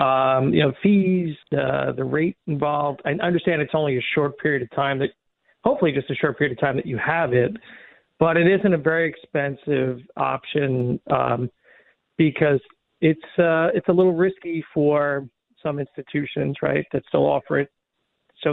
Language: English